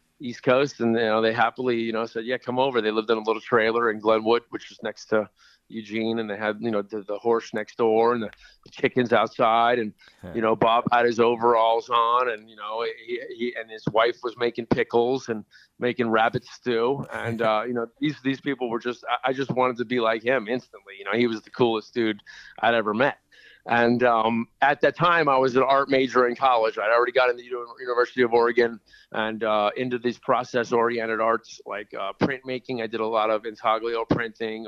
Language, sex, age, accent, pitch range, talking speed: English, male, 40-59, American, 110-125 Hz, 225 wpm